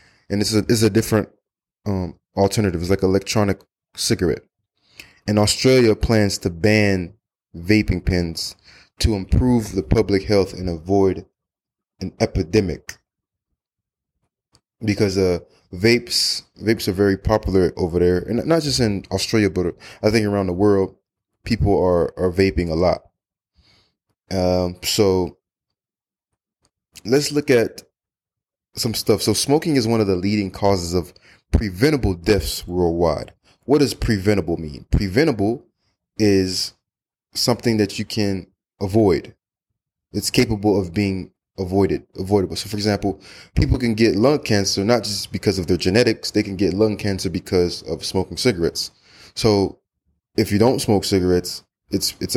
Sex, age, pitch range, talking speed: male, 20-39, 95-105 Hz, 140 wpm